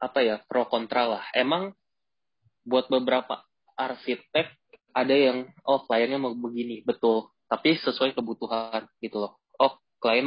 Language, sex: Indonesian, male